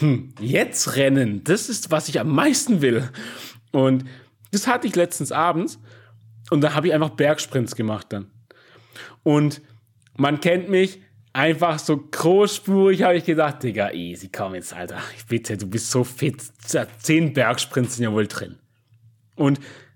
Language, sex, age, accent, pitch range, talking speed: German, male, 30-49, German, 120-175 Hz, 150 wpm